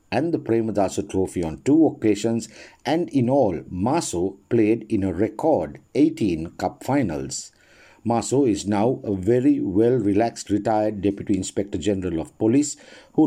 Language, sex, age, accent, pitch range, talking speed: English, male, 50-69, Indian, 100-135 Hz, 140 wpm